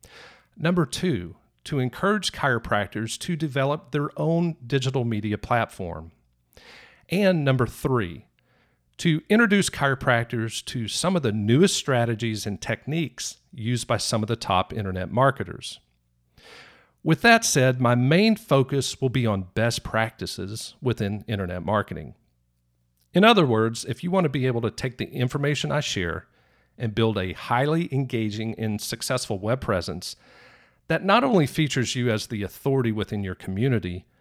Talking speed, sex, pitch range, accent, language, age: 145 wpm, male, 105-140 Hz, American, English, 50-69